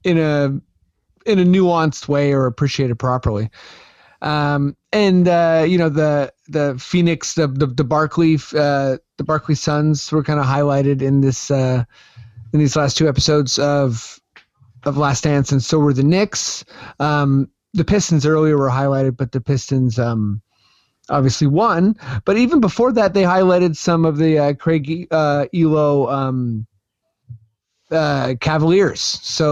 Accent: American